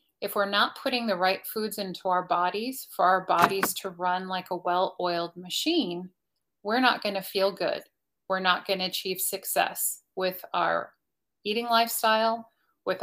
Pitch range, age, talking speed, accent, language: 185-210 Hz, 30-49, 155 wpm, American, English